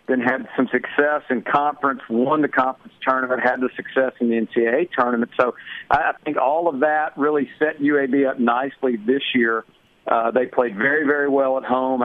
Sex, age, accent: male, 50-69, American